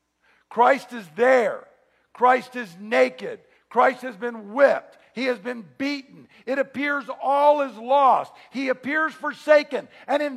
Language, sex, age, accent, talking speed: English, male, 50-69, American, 140 wpm